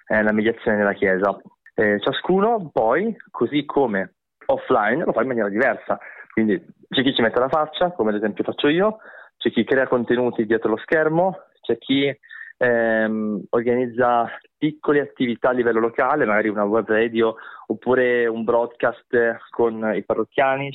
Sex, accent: male, native